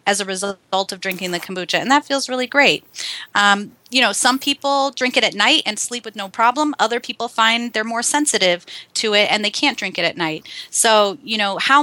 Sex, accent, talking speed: female, American, 230 wpm